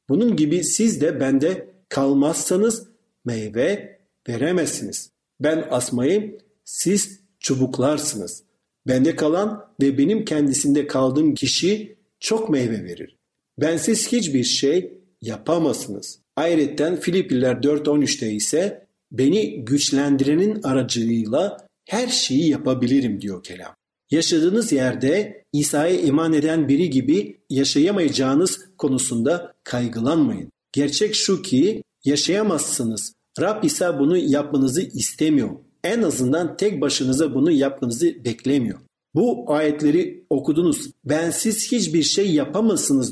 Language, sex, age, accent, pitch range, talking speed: Turkish, male, 50-69, native, 130-200 Hz, 100 wpm